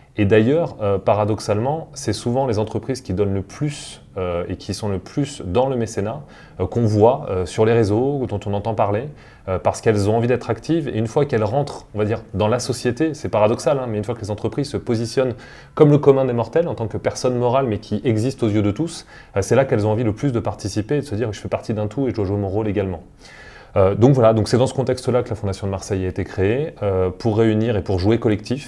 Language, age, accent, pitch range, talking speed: French, 30-49, French, 100-125 Hz, 270 wpm